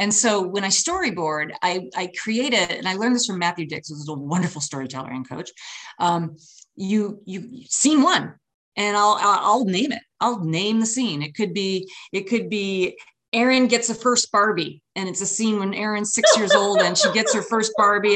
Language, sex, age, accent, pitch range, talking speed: English, female, 30-49, American, 170-220 Hz, 205 wpm